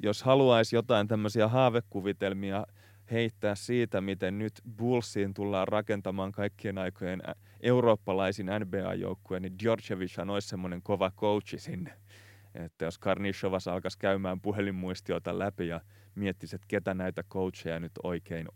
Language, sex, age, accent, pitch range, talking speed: Finnish, male, 30-49, native, 95-110 Hz, 125 wpm